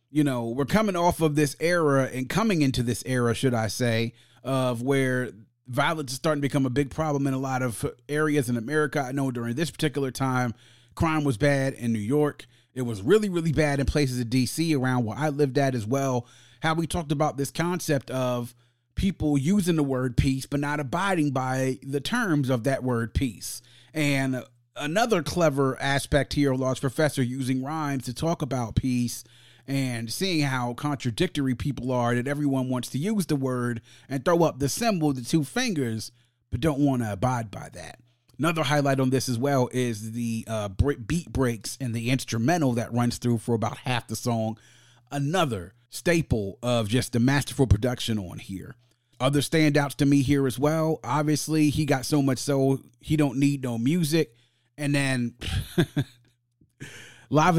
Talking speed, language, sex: 185 wpm, English, male